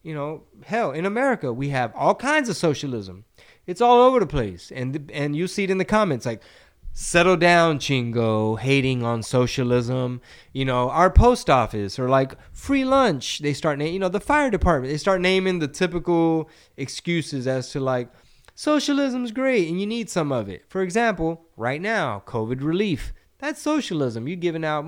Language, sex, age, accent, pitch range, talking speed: English, male, 20-39, American, 115-175 Hz, 180 wpm